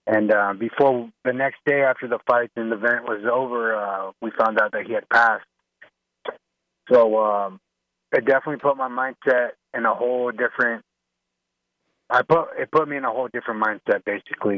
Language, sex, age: English, male, 30-49